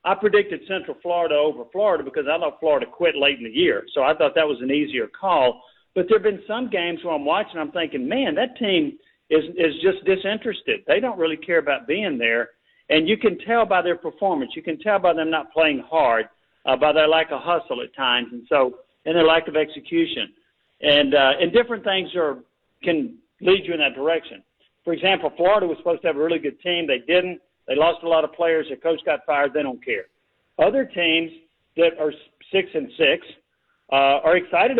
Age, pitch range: 50-69, 155-210 Hz